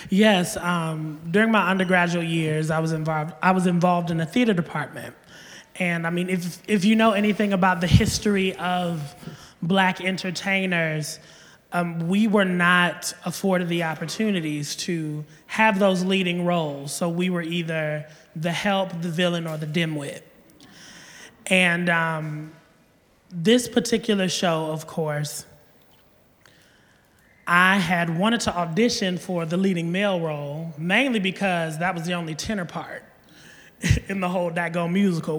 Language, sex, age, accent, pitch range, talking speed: English, male, 20-39, American, 165-210 Hz, 140 wpm